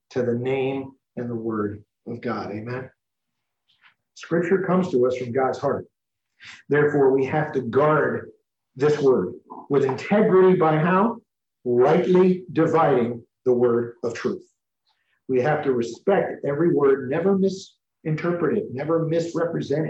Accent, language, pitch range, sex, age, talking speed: American, English, 120-160 Hz, male, 50-69, 135 wpm